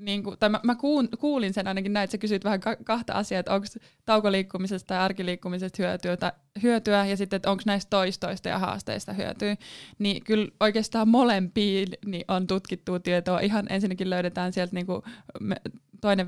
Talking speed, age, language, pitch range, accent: 160 wpm, 20-39, Finnish, 180-205 Hz, native